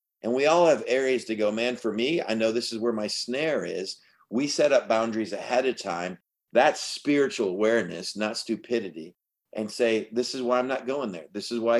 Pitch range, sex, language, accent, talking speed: 100-130 Hz, male, English, American, 215 wpm